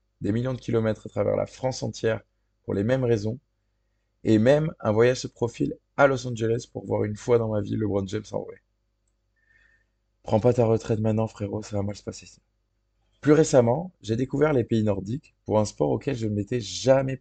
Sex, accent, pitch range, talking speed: male, French, 105-115 Hz, 210 wpm